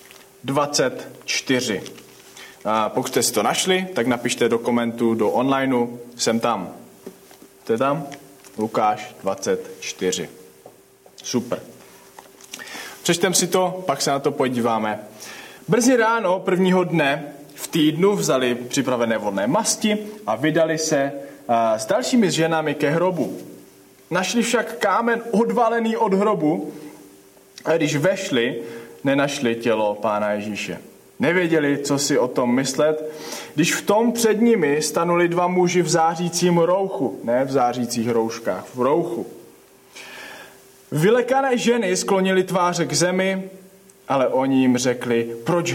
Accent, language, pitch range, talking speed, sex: Czech, English, 120-190 Hz, 120 wpm, male